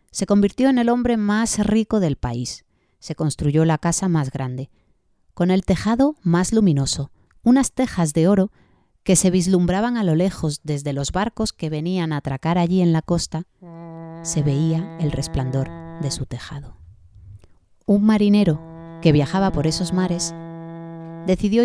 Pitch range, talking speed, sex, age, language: 150-200 Hz, 155 wpm, female, 30-49, Spanish